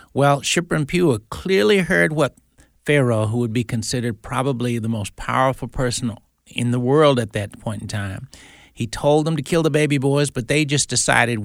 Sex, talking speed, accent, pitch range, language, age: male, 195 wpm, American, 110-140 Hz, English, 60-79